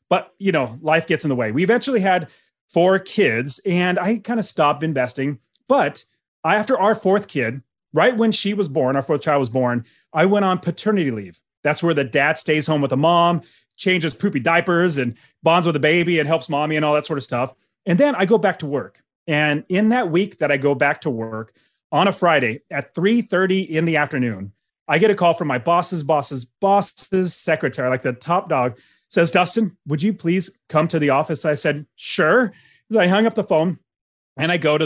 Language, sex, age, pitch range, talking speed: English, male, 30-49, 140-185 Hz, 215 wpm